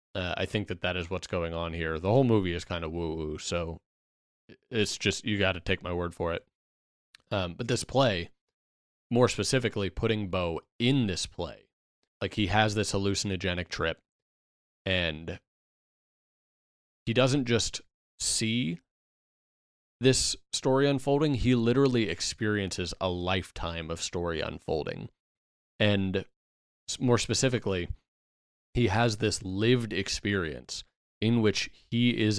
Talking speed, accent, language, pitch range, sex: 135 wpm, American, English, 85-105 Hz, male